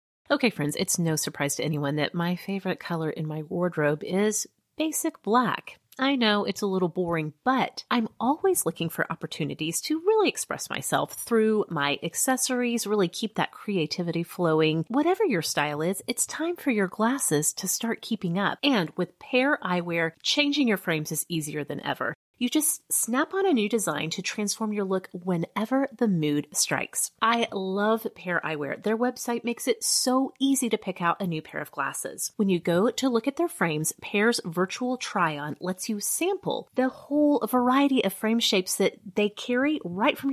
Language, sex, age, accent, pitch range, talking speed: English, female, 30-49, American, 165-250 Hz, 185 wpm